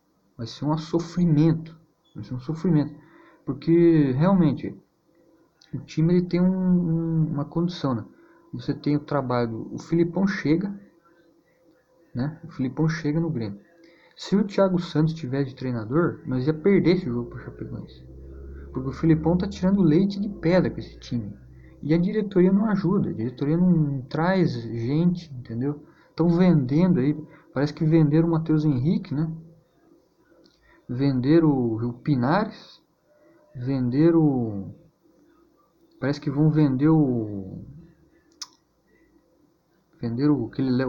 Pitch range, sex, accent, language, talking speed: 130-170 Hz, male, Brazilian, Portuguese, 135 wpm